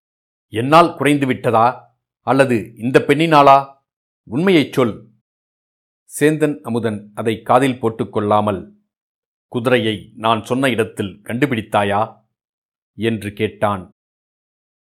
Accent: native